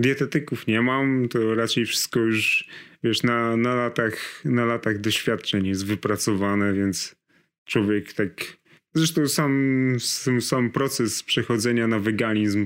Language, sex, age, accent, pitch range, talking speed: Polish, male, 30-49, native, 105-115 Hz, 125 wpm